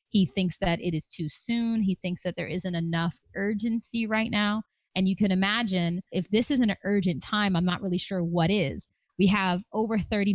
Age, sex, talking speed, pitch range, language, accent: 20-39, female, 210 wpm, 175-210 Hz, English, American